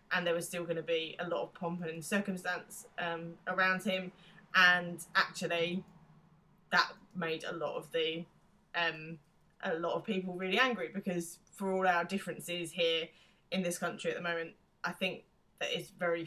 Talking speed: 175 wpm